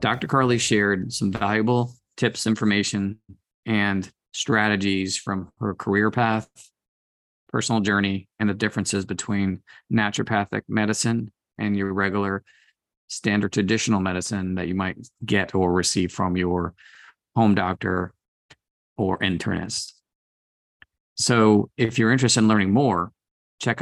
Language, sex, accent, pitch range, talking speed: English, male, American, 95-110 Hz, 120 wpm